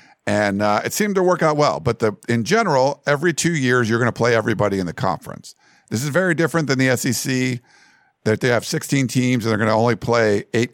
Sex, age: male, 50-69